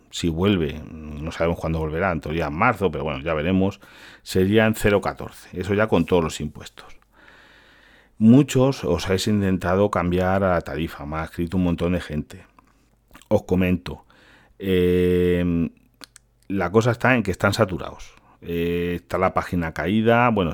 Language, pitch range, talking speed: Spanish, 85-100 Hz, 155 wpm